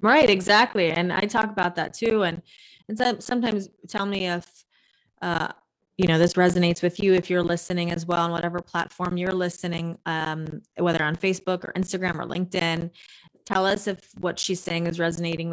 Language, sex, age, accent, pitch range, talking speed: English, female, 20-39, American, 170-205 Hz, 185 wpm